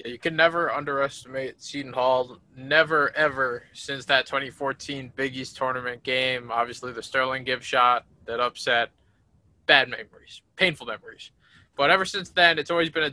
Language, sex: English, male